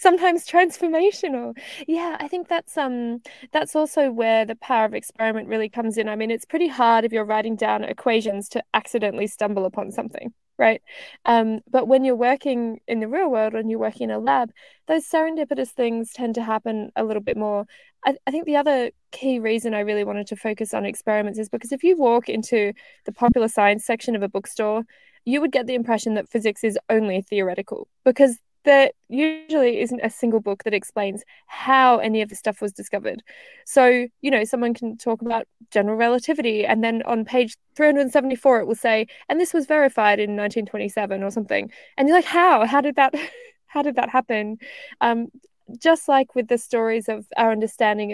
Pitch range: 215-275 Hz